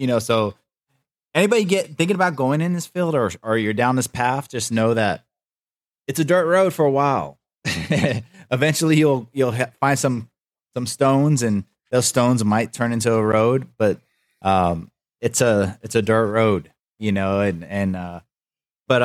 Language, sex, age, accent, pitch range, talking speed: English, male, 30-49, American, 100-125 Hz, 175 wpm